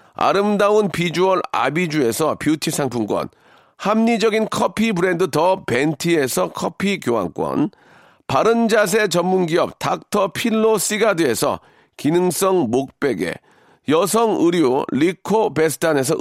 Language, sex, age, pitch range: Korean, male, 40-59, 175-220 Hz